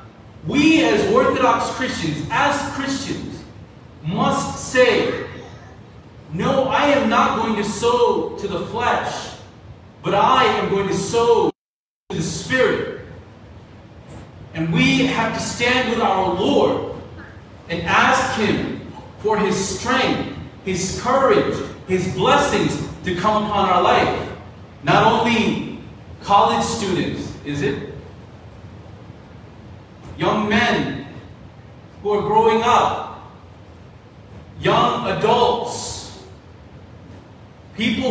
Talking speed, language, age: 100 wpm, English, 40-59